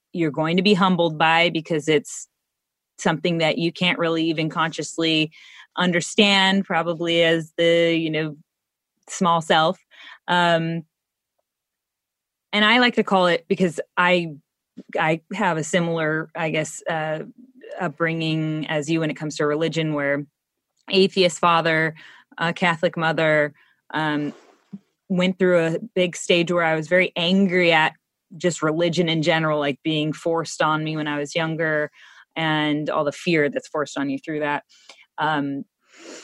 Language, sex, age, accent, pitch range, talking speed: English, female, 20-39, American, 155-185 Hz, 145 wpm